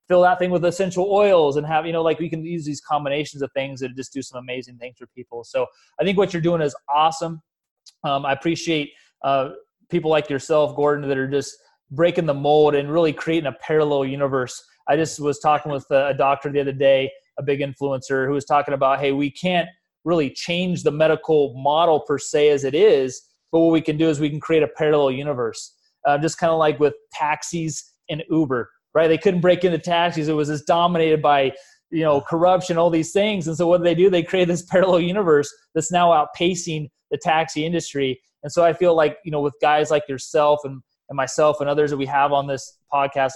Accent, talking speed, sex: American, 225 wpm, male